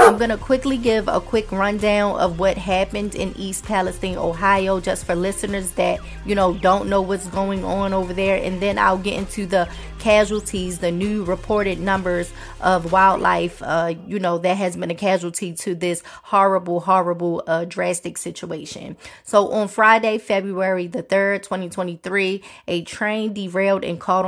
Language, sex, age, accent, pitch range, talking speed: English, female, 30-49, American, 185-215 Hz, 170 wpm